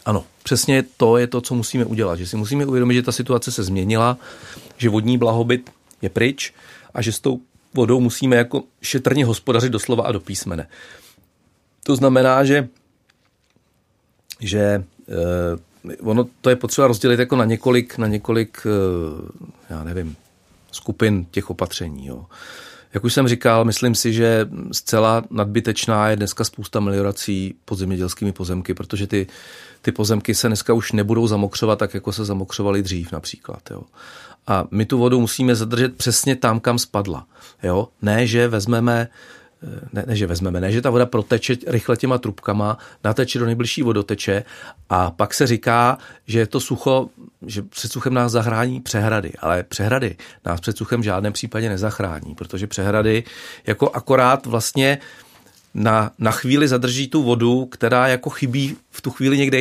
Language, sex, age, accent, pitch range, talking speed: Czech, male, 40-59, native, 105-125 Hz, 160 wpm